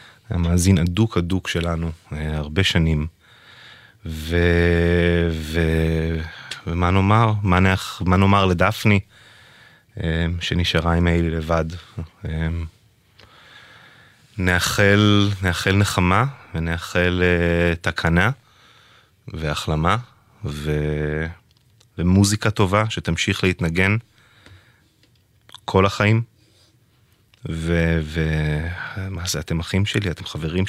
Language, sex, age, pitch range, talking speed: English, male, 20-39, 85-105 Hz, 65 wpm